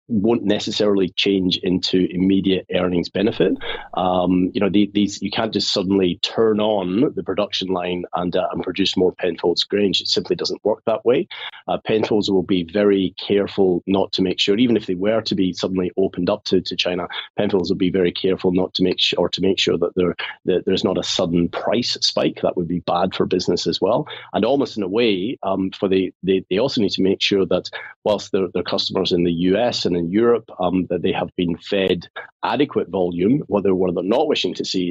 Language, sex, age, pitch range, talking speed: English, male, 30-49, 90-100 Hz, 220 wpm